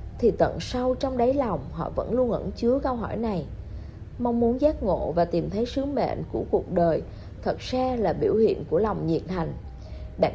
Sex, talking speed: female, 210 wpm